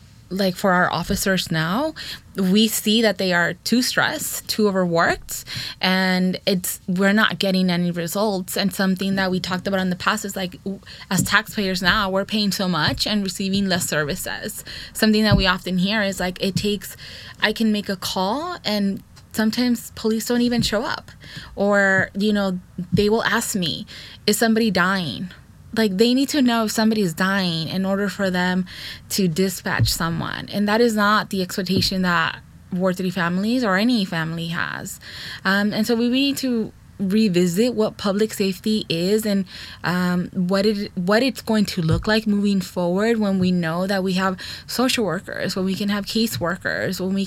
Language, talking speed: English, 180 wpm